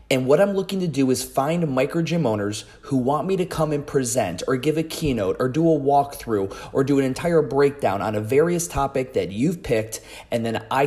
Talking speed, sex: 225 wpm, male